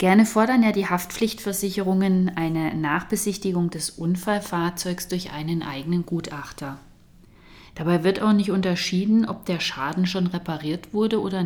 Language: German